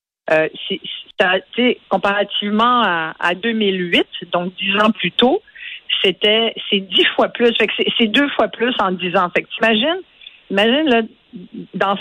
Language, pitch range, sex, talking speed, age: French, 190-240 Hz, female, 155 wpm, 50-69